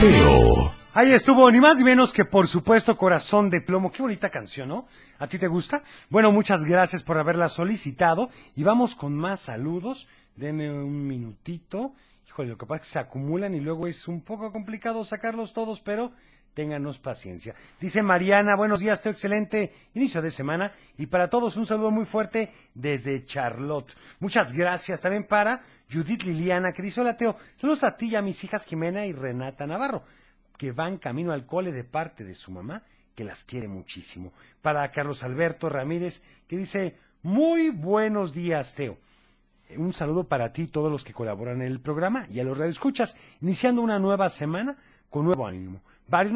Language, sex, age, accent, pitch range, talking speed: Spanish, male, 40-59, Mexican, 145-215 Hz, 180 wpm